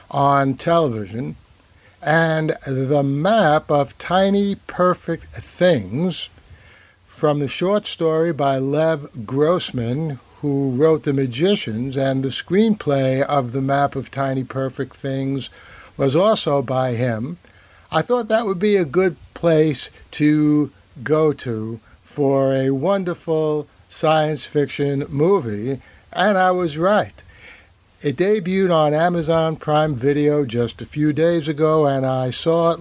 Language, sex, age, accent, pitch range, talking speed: English, male, 60-79, American, 130-160 Hz, 130 wpm